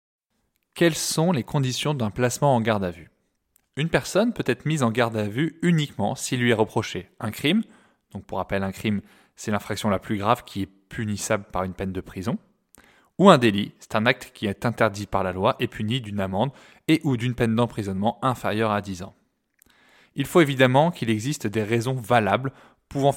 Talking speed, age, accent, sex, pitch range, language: 200 wpm, 20-39, French, male, 105-135 Hz, French